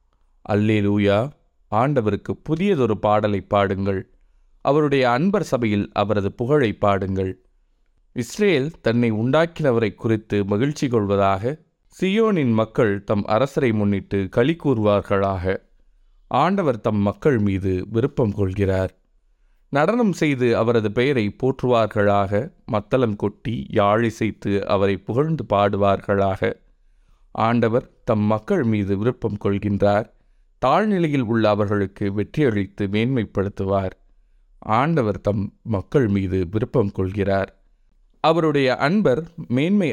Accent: native